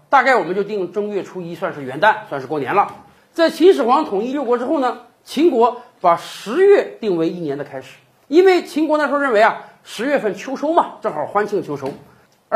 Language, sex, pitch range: Chinese, male, 185-315 Hz